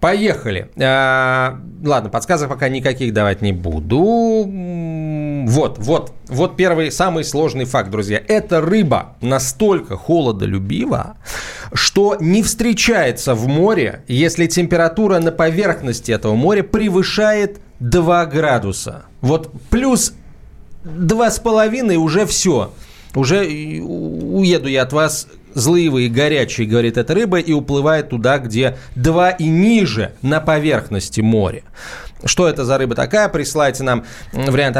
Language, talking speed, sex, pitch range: Russian, 120 wpm, male, 125-175 Hz